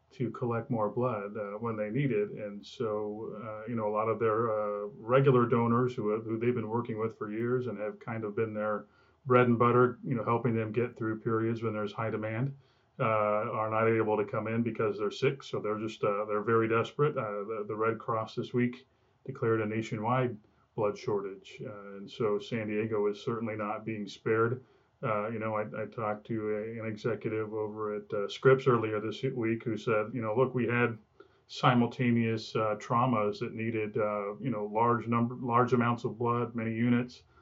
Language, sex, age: English, male, 30-49